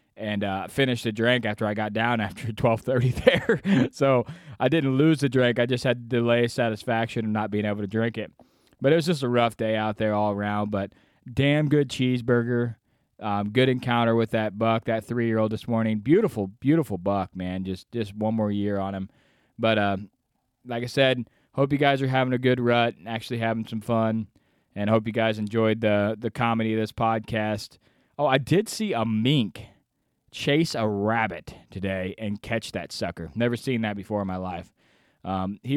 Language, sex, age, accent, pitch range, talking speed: English, male, 20-39, American, 105-125 Hz, 205 wpm